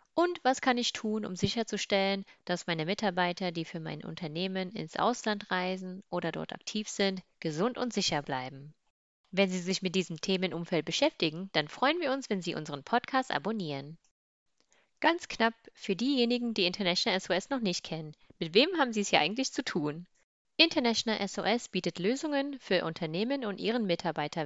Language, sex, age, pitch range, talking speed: German, female, 30-49, 170-235 Hz, 170 wpm